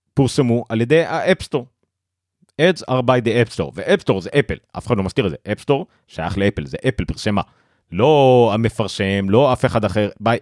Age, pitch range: 40-59, 95-130 Hz